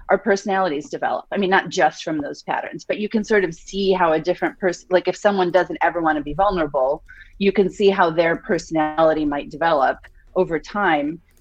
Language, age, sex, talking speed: English, 30-49, female, 205 wpm